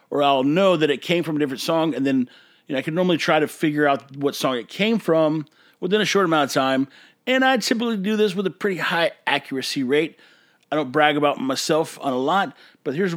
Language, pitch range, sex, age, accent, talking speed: English, 140-195 Hz, male, 40-59, American, 240 wpm